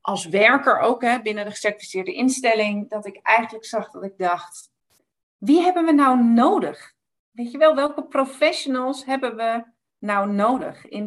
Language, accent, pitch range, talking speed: Dutch, Dutch, 200-260 Hz, 155 wpm